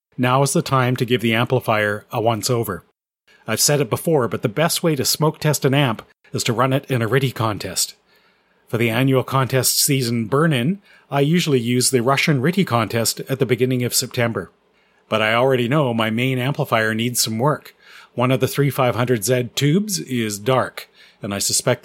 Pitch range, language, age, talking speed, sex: 115-140 Hz, English, 40-59, 190 wpm, male